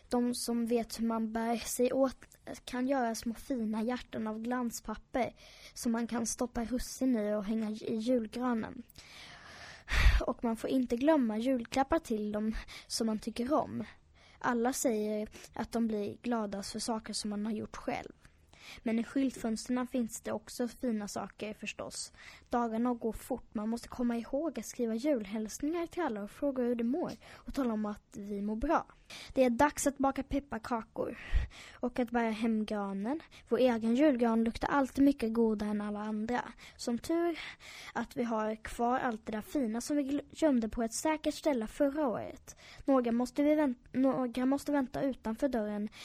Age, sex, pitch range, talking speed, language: 20-39, female, 220-270 Hz, 170 wpm, Swedish